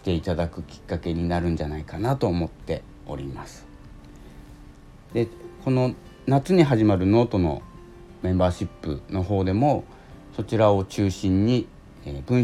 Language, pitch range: Japanese, 80-115 Hz